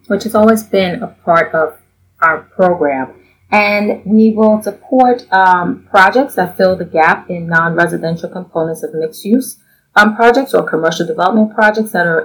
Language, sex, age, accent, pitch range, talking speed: English, female, 30-49, American, 170-215 Hz, 150 wpm